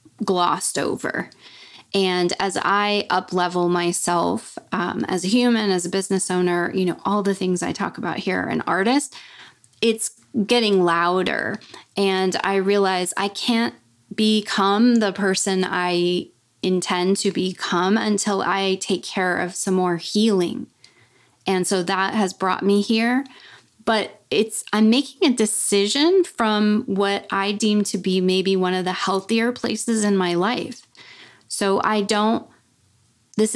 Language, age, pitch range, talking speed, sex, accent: English, 20-39, 185-215 Hz, 150 wpm, female, American